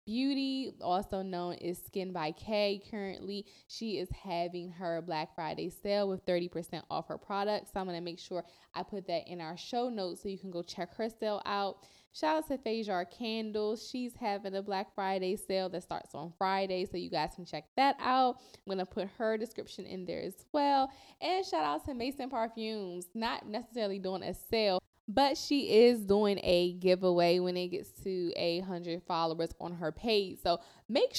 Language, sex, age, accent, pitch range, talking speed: English, female, 10-29, American, 175-215 Hz, 200 wpm